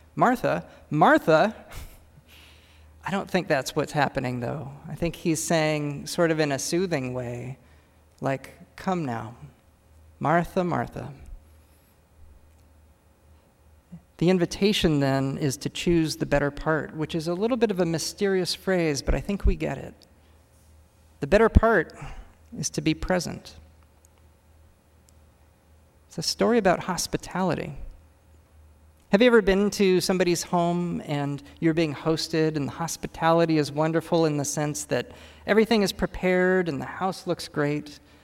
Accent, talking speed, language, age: American, 140 wpm, English, 40-59